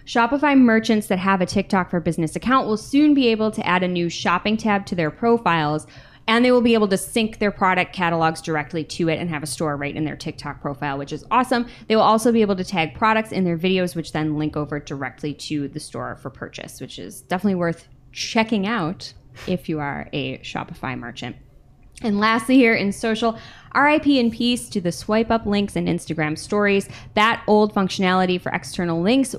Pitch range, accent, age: 155-215 Hz, American, 20-39